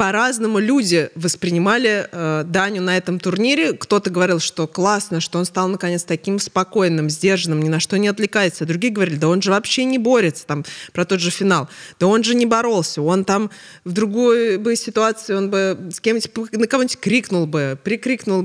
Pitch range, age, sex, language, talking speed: 165-210 Hz, 20-39, female, Russian, 180 wpm